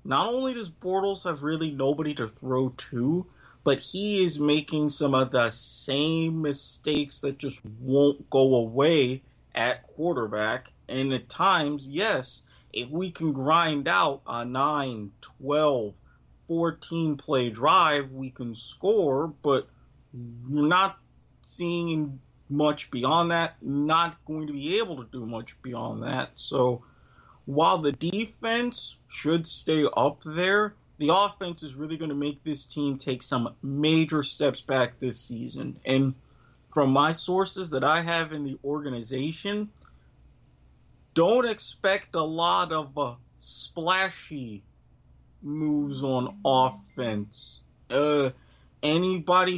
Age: 30-49